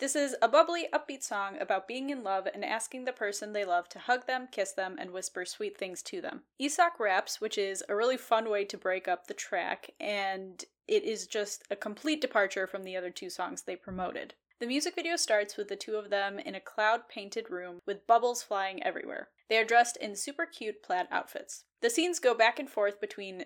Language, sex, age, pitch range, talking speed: English, female, 10-29, 190-255 Hz, 220 wpm